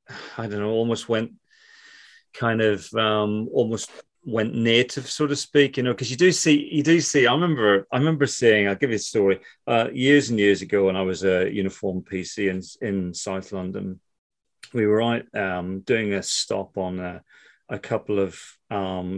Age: 40-59